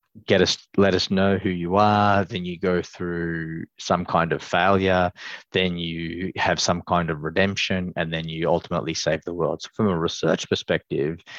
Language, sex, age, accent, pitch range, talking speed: English, male, 20-39, Australian, 85-95 Hz, 185 wpm